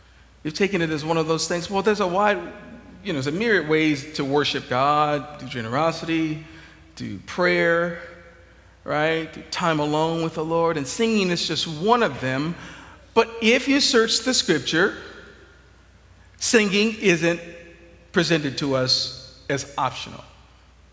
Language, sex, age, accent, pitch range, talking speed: English, male, 50-69, American, 125-180 Hz, 145 wpm